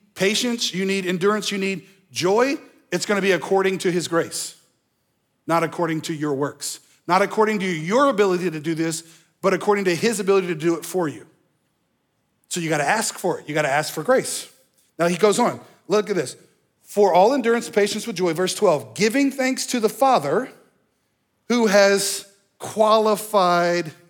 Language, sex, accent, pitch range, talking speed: English, male, American, 160-200 Hz, 175 wpm